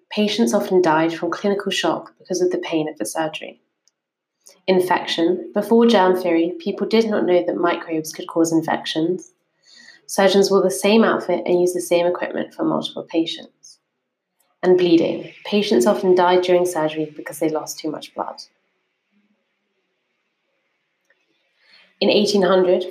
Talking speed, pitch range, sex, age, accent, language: 140 wpm, 170-200 Hz, female, 30-49, British, English